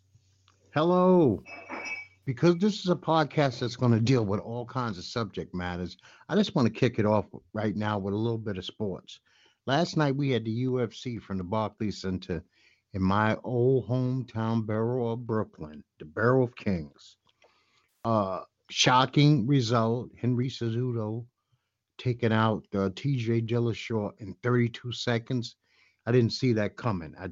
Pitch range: 105-125 Hz